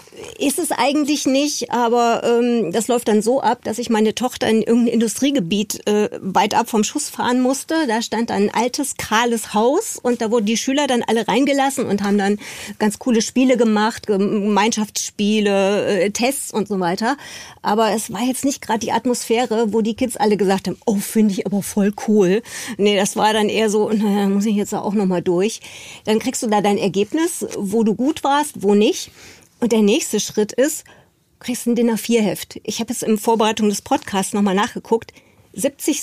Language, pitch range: German, 210-250 Hz